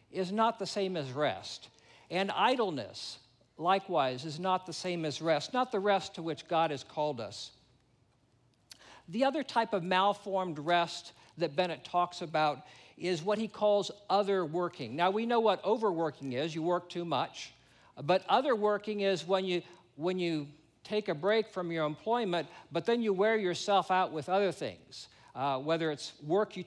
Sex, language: male, English